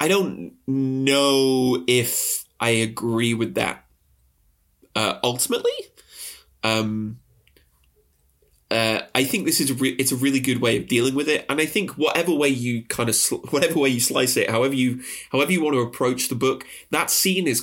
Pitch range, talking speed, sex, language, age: 115-140 Hz, 165 wpm, male, English, 20-39